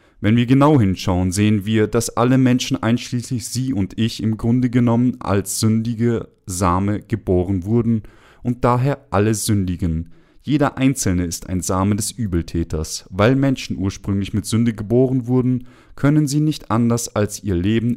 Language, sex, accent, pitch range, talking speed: German, male, German, 95-125 Hz, 155 wpm